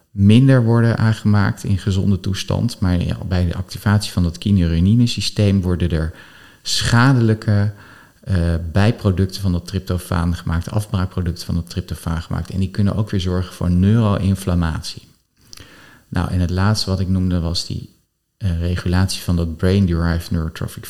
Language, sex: Dutch, male